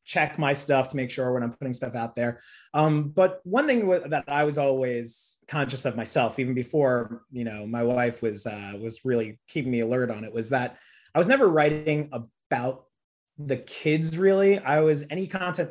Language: English